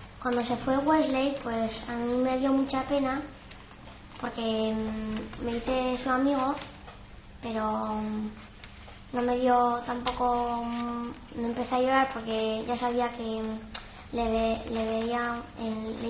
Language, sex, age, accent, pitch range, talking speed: Spanish, male, 10-29, Spanish, 205-255 Hz, 125 wpm